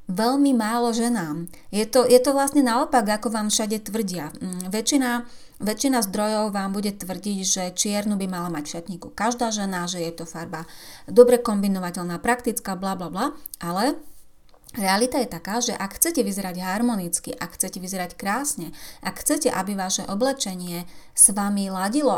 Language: Slovak